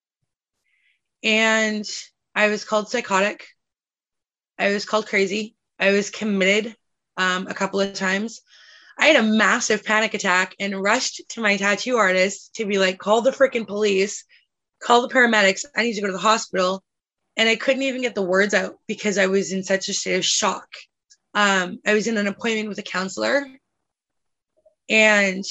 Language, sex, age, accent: English, female, 20-39, American